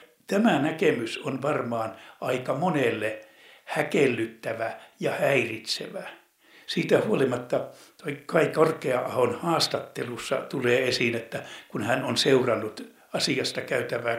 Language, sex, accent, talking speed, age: Finnish, male, native, 105 wpm, 60-79